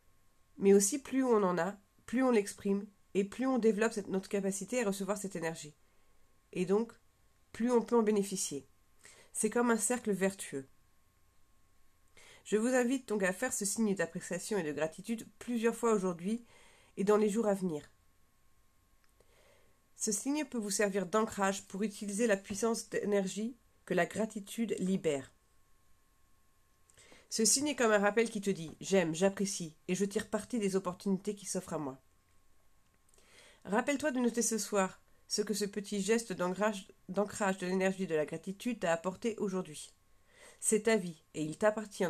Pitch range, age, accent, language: 155-215 Hz, 40-59, French, French